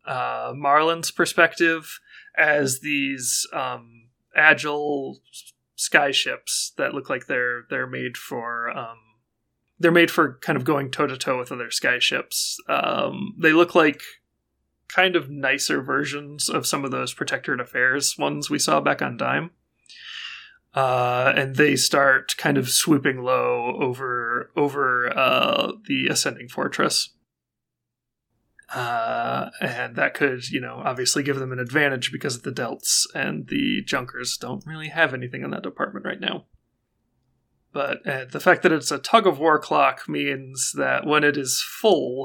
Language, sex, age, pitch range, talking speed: English, male, 30-49, 125-160 Hz, 150 wpm